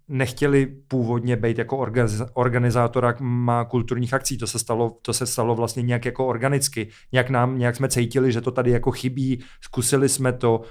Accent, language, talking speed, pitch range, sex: native, Czech, 170 wpm, 120-130 Hz, male